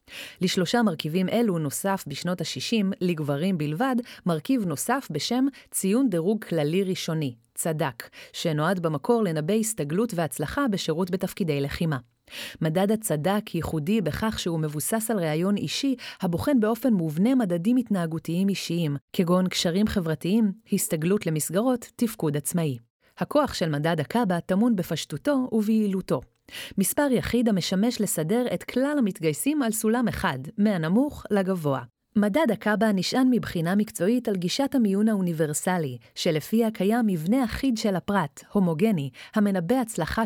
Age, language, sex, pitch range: 30-49, Hebrew, female, 160-220 Hz